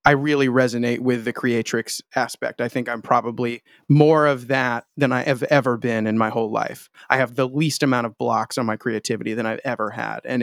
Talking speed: 220 wpm